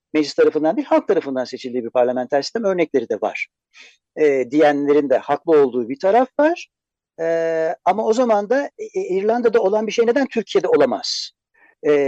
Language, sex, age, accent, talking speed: Turkish, male, 60-79, native, 165 wpm